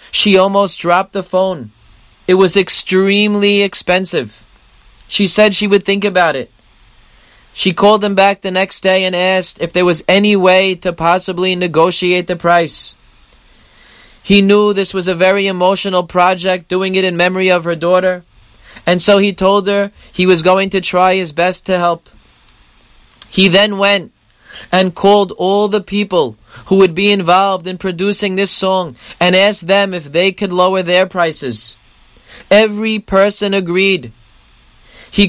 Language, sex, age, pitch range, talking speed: English, male, 30-49, 180-200 Hz, 160 wpm